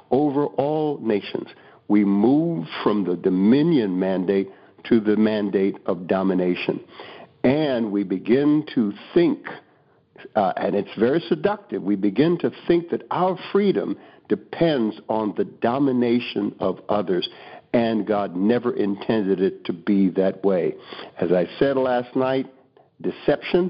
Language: English